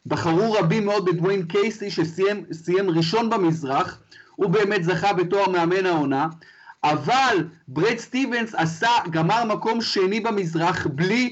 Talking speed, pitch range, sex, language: 120 wpm, 170-220 Hz, male, Hebrew